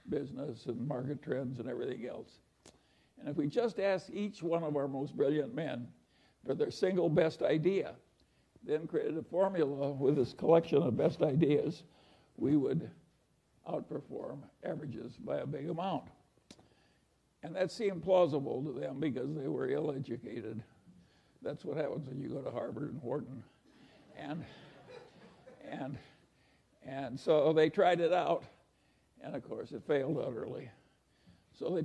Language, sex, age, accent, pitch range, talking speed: English, male, 60-79, American, 130-175 Hz, 145 wpm